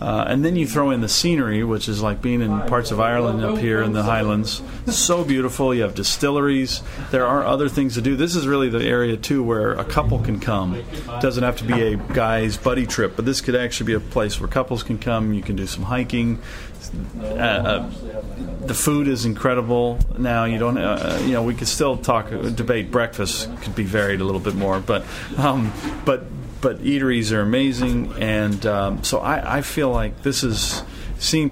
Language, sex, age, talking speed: English, male, 40-59, 210 wpm